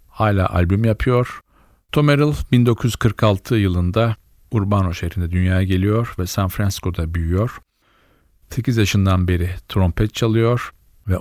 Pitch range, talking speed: 90-110 Hz, 110 wpm